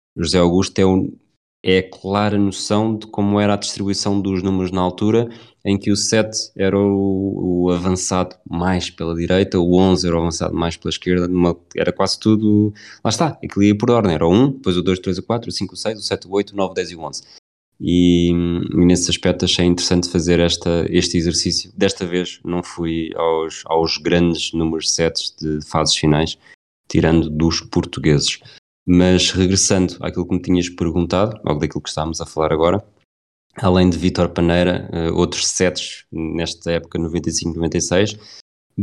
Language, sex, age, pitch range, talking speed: Portuguese, male, 20-39, 80-95 Hz, 175 wpm